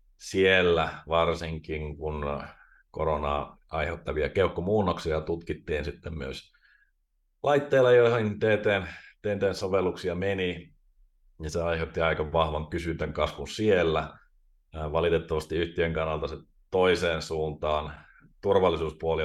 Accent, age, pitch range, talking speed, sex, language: native, 30-49, 75-105 Hz, 90 wpm, male, Finnish